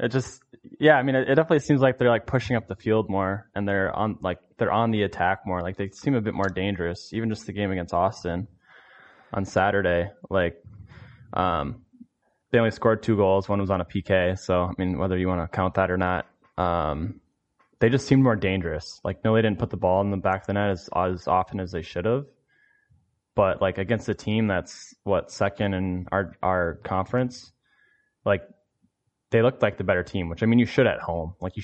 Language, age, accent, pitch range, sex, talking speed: English, 20-39, American, 90-115 Hz, male, 225 wpm